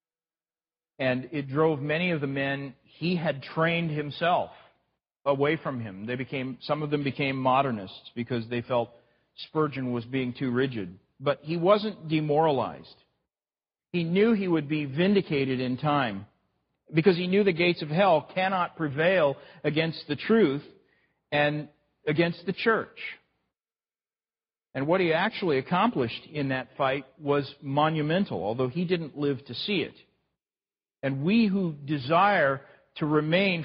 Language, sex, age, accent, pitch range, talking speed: English, male, 50-69, American, 135-175 Hz, 145 wpm